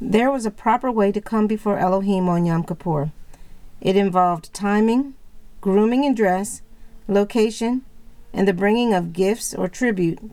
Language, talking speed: English, 150 wpm